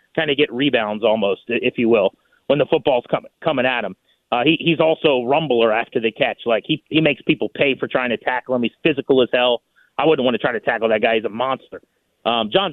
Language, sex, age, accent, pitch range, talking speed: English, male, 30-49, American, 120-150 Hz, 250 wpm